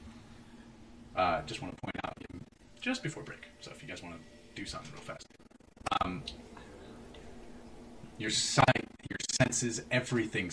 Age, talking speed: 30-49, 135 wpm